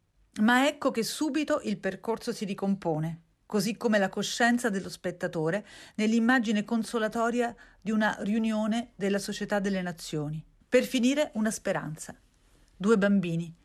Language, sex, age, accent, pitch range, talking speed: Italian, female, 40-59, native, 185-235 Hz, 125 wpm